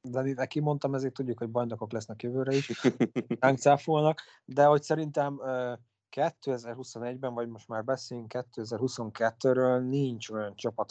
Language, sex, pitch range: Hungarian, male, 110-130 Hz